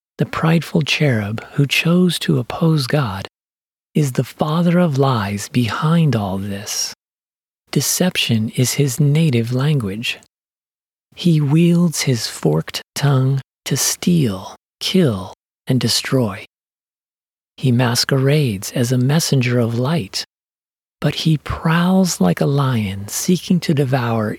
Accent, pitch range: American, 115-155 Hz